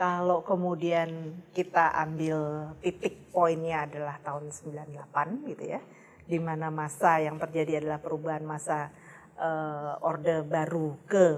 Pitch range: 155-180 Hz